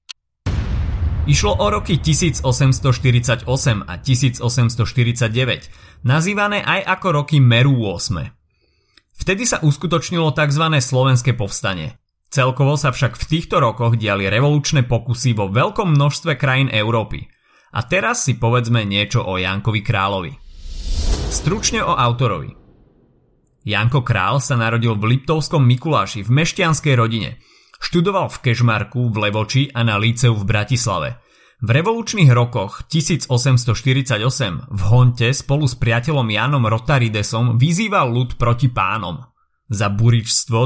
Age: 30-49